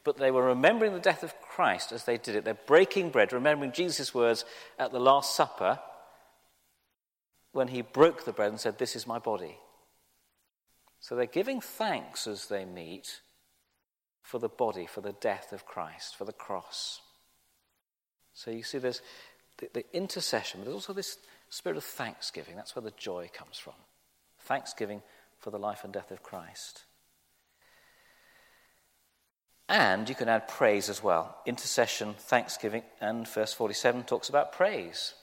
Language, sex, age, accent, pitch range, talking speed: English, male, 50-69, British, 105-145 Hz, 160 wpm